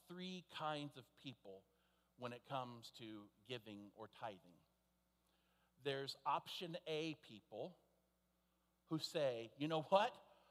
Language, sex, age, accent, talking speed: English, male, 50-69, American, 115 wpm